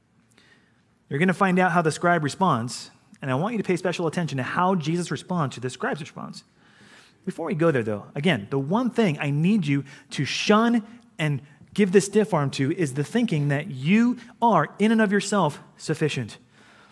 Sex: male